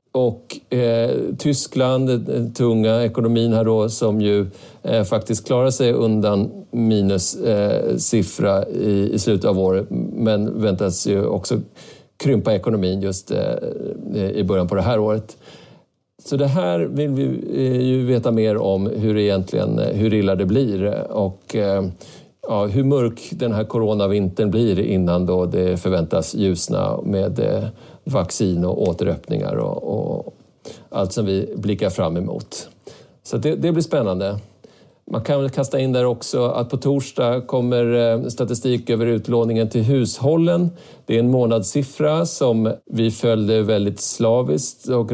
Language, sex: Swedish, male